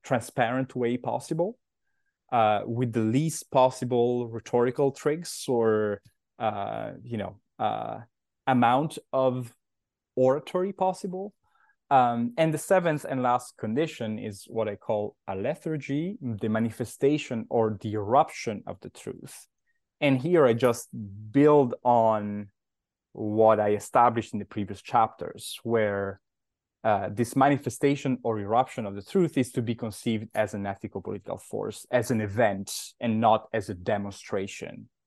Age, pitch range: 20-39, 110-140 Hz